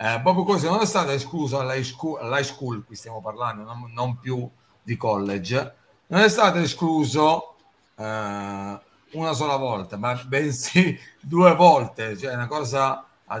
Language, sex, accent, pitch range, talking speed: Italian, male, native, 110-150 Hz, 155 wpm